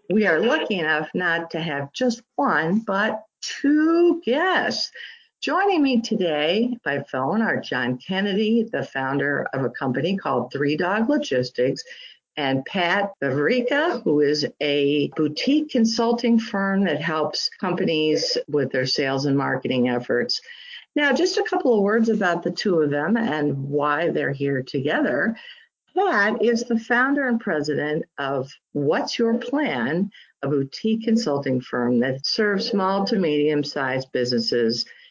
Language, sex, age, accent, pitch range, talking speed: English, female, 50-69, American, 145-235 Hz, 140 wpm